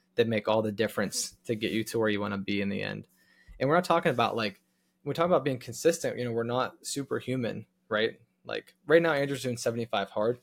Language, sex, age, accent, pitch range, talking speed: English, male, 20-39, American, 110-125 Hz, 235 wpm